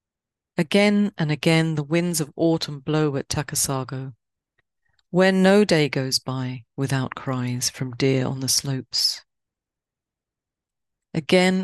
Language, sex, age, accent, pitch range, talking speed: English, female, 40-59, British, 135-175 Hz, 120 wpm